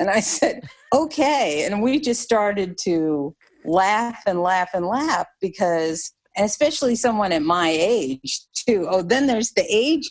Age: 50-69